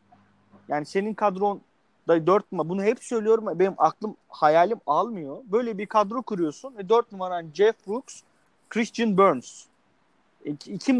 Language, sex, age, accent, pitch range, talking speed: Turkish, male, 30-49, native, 160-215 Hz, 130 wpm